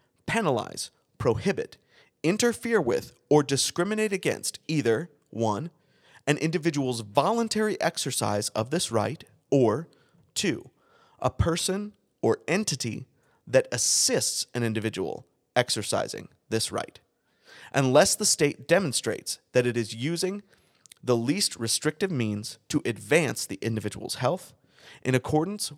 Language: English